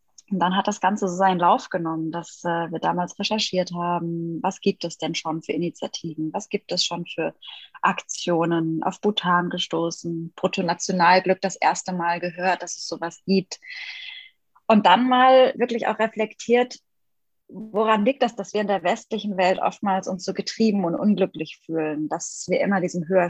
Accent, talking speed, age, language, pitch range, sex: German, 175 wpm, 20-39, German, 175-210 Hz, female